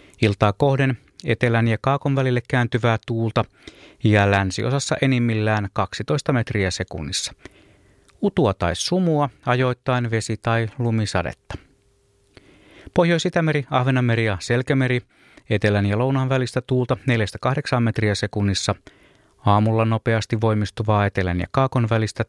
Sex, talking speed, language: male, 110 wpm, Finnish